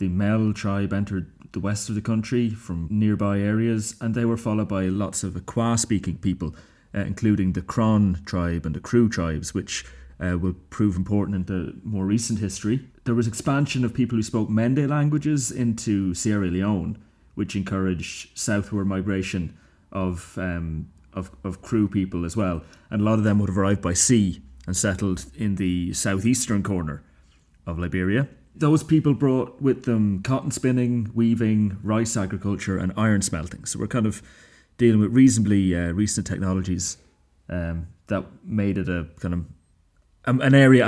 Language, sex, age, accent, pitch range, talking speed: English, male, 30-49, British, 95-115 Hz, 165 wpm